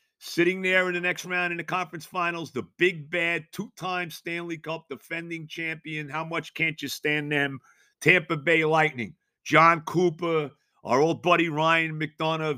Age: 50-69